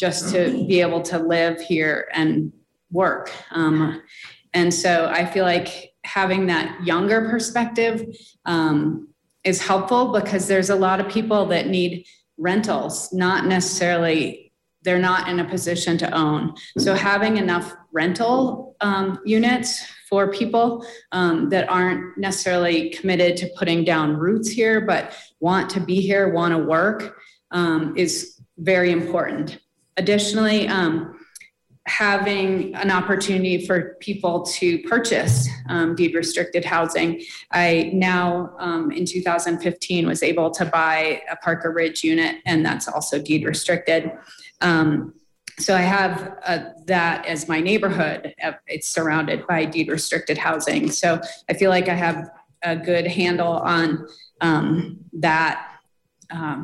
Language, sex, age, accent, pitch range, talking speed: English, female, 30-49, American, 165-195 Hz, 135 wpm